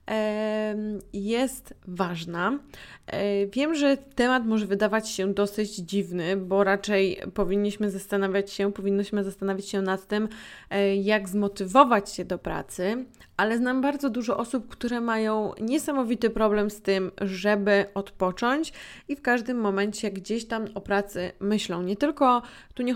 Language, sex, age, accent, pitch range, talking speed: Polish, female, 20-39, native, 195-230 Hz, 130 wpm